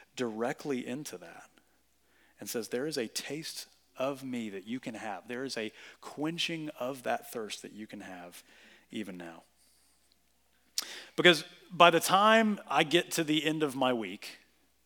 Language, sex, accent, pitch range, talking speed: English, male, American, 140-190 Hz, 160 wpm